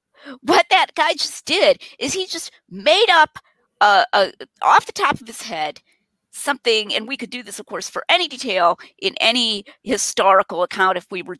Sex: female